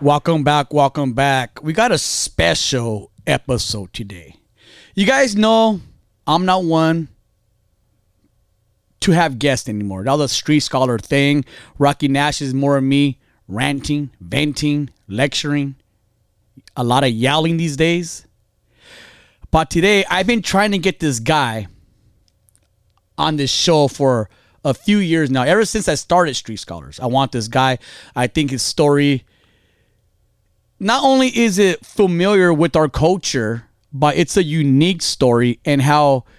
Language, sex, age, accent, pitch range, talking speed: English, male, 30-49, American, 110-155 Hz, 140 wpm